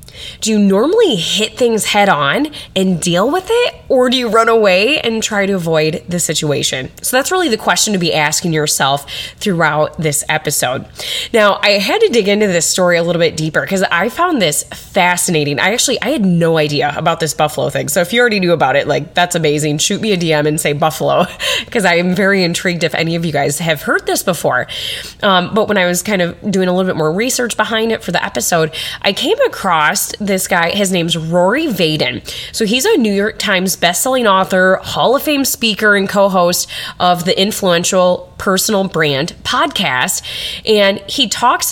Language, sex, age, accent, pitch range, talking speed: English, female, 20-39, American, 165-210 Hz, 205 wpm